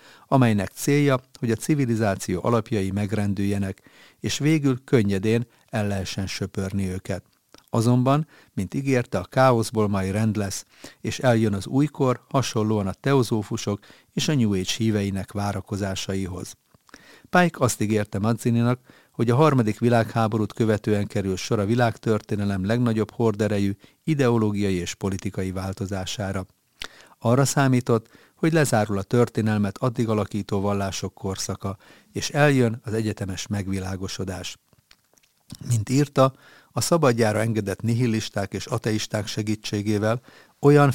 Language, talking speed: Hungarian, 115 wpm